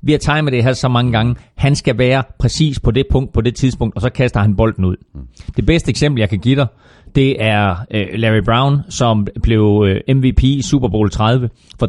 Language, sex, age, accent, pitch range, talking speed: Danish, male, 30-49, native, 110-150 Hz, 230 wpm